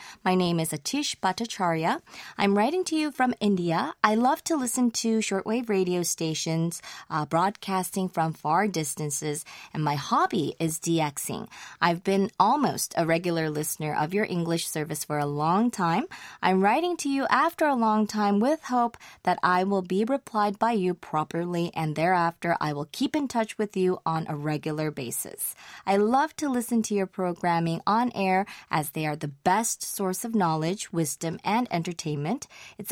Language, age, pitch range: English, 20-39, 165-230 Hz